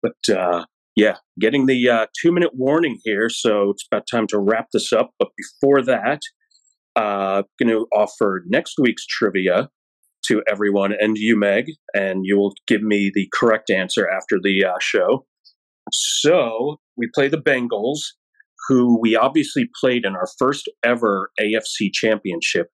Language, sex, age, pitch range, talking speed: English, male, 40-59, 95-125 Hz, 160 wpm